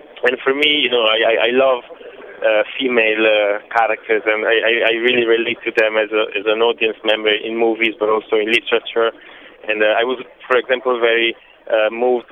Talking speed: 205 wpm